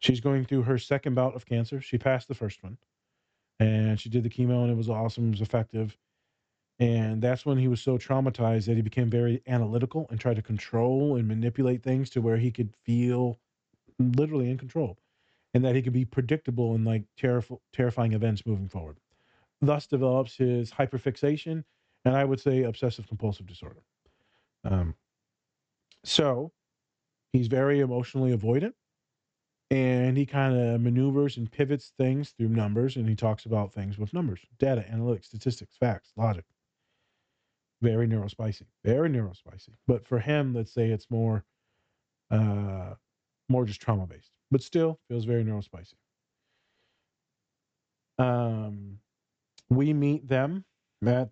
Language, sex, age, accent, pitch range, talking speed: English, male, 40-59, American, 110-130 Hz, 150 wpm